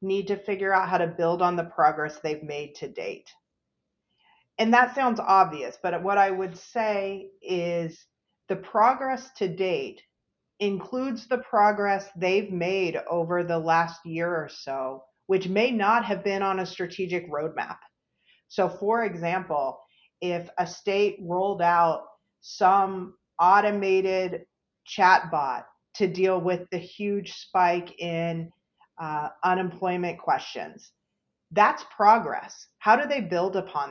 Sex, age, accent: female, 40-59, American